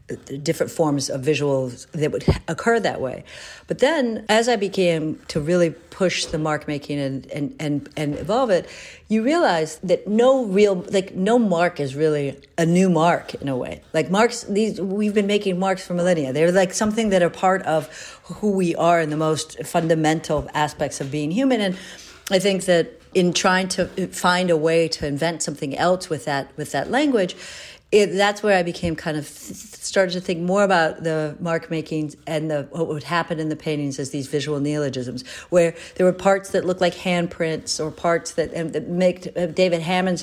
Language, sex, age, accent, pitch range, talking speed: English, female, 50-69, American, 155-190 Hz, 195 wpm